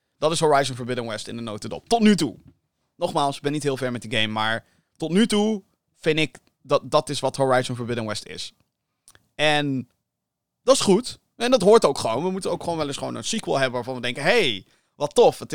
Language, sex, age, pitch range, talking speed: Dutch, male, 20-39, 120-175 Hz, 235 wpm